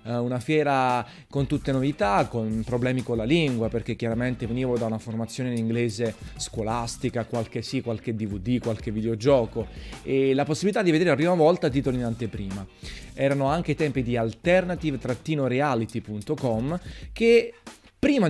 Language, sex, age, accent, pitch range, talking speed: Italian, male, 20-39, native, 115-145 Hz, 145 wpm